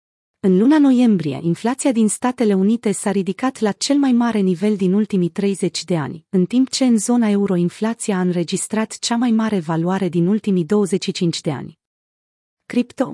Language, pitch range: Romanian, 180-225 Hz